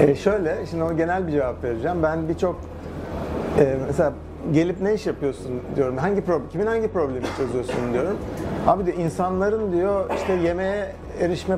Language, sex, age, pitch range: Turkish, male, 60-79, 130-165 Hz